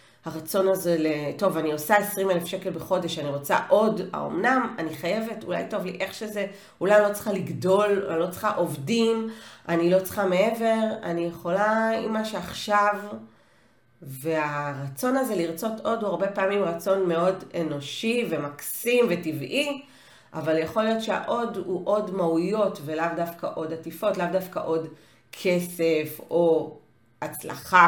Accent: native